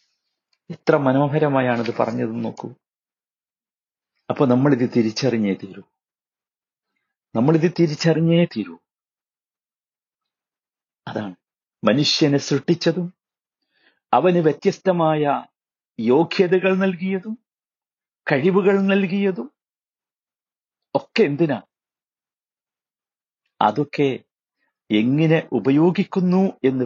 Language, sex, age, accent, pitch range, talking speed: Malayalam, male, 50-69, native, 155-215 Hz, 60 wpm